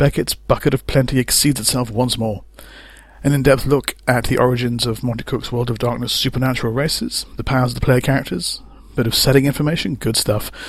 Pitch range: 110-130 Hz